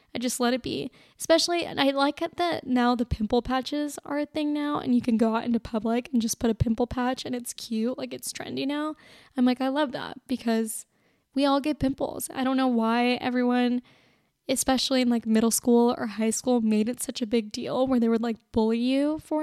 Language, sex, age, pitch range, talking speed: English, female, 10-29, 245-310 Hz, 230 wpm